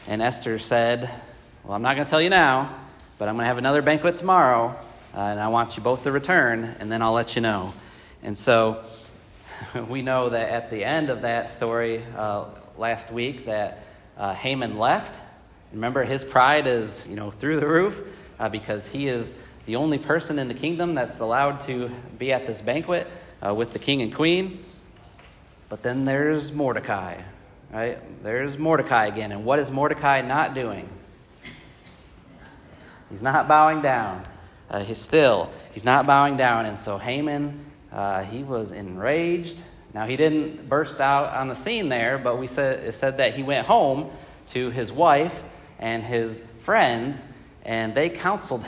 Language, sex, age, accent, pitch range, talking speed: English, male, 40-59, American, 115-145 Hz, 175 wpm